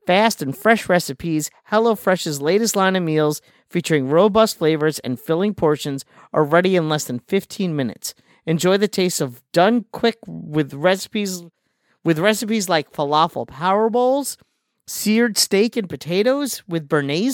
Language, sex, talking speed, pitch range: English, male, 145 wpm, 155-205 Hz